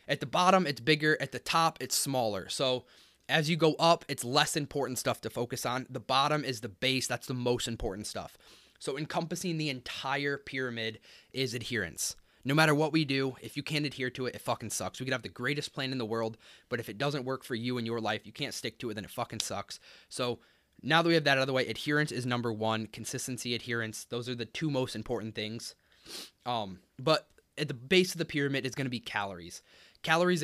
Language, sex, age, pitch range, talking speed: English, male, 20-39, 115-145 Hz, 235 wpm